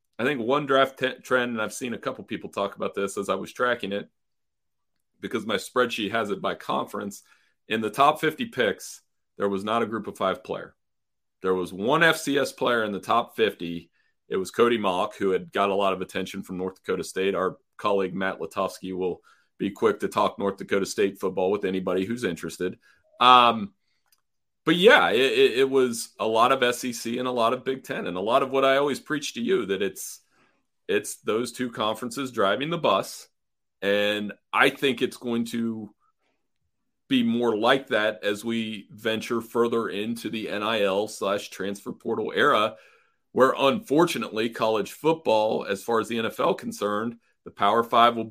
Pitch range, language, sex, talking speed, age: 100-125 Hz, English, male, 190 wpm, 30-49